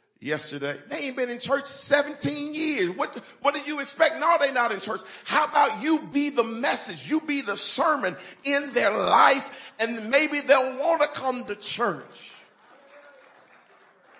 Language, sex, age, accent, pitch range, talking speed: English, male, 40-59, American, 210-295 Hz, 165 wpm